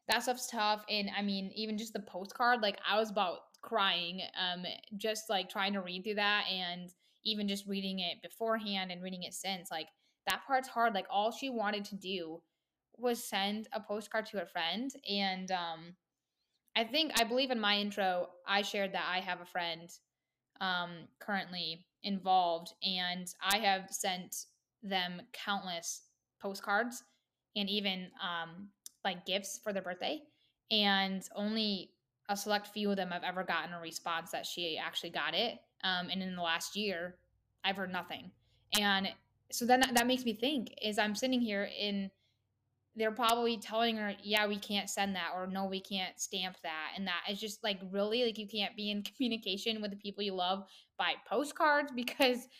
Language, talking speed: English, 180 wpm